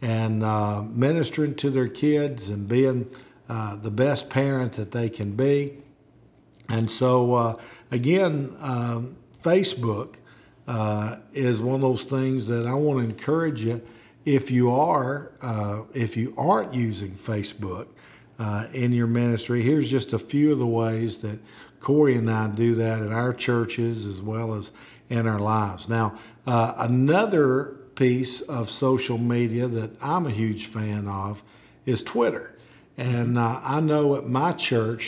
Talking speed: 155 wpm